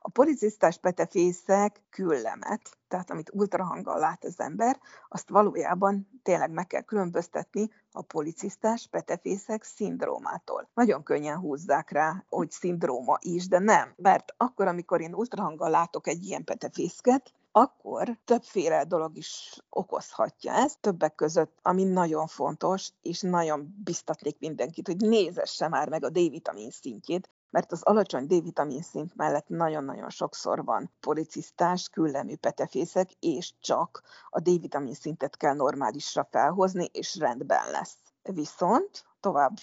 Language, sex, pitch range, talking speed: Hungarian, female, 170-225 Hz, 130 wpm